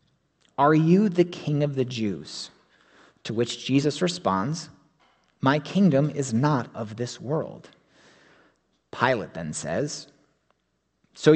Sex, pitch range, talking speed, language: male, 115-160 Hz, 115 wpm, English